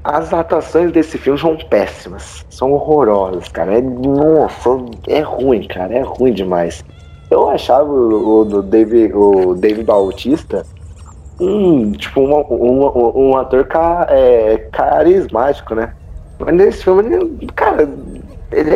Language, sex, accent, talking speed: Portuguese, male, Brazilian, 130 wpm